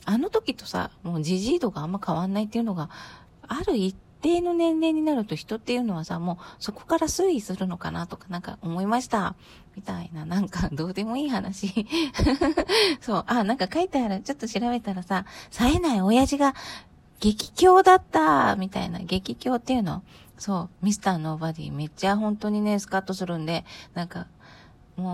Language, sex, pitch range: Japanese, female, 180-225 Hz